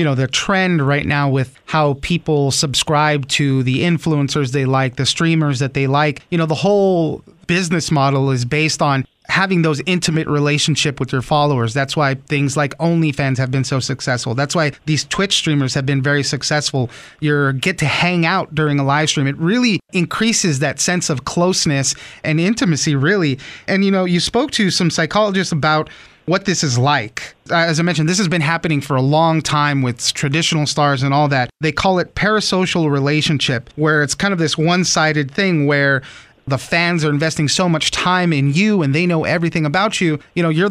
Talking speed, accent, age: 200 wpm, American, 30-49